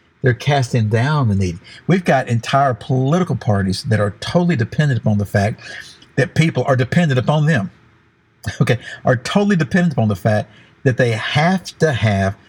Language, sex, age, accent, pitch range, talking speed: English, male, 60-79, American, 110-155 Hz, 170 wpm